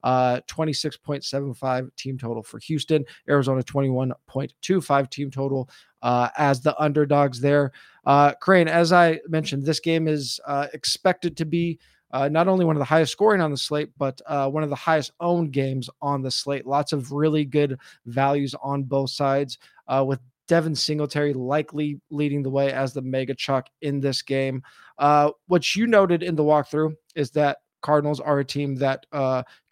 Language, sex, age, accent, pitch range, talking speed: English, male, 20-39, American, 140-160 Hz, 175 wpm